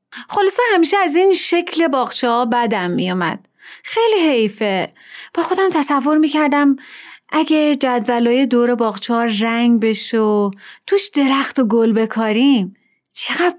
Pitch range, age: 220-300 Hz, 30-49